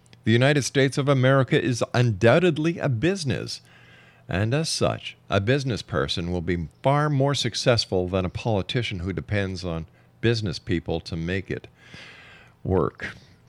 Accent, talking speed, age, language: American, 140 wpm, 50-69, English